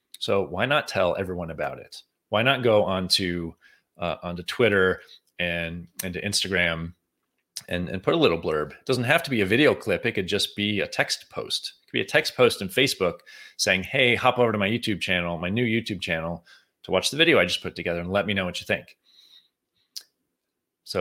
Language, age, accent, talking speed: English, 30-49, American, 215 wpm